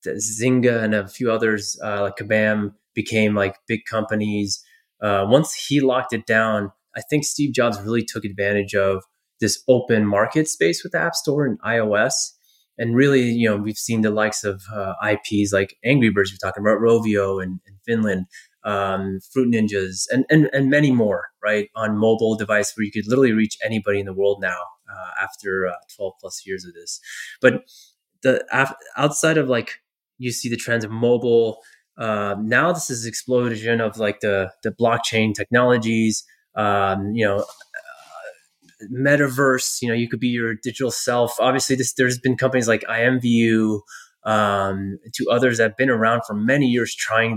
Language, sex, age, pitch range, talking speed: English, male, 20-39, 105-130 Hz, 180 wpm